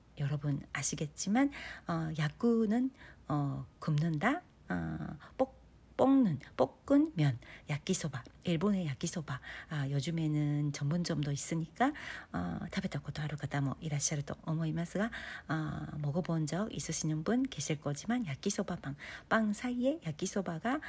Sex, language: female, Korean